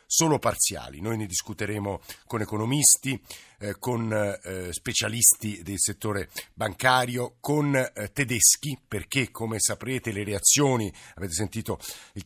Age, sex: 50-69, male